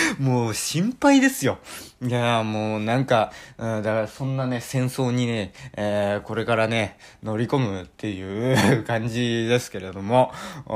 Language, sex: Japanese, male